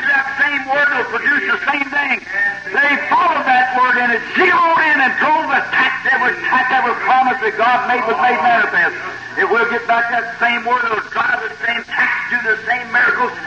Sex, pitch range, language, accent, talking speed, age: male, 240-355 Hz, English, American, 190 wpm, 60-79